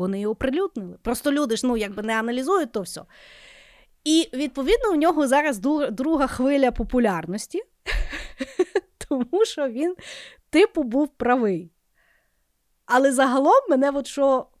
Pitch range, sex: 225-295 Hz, female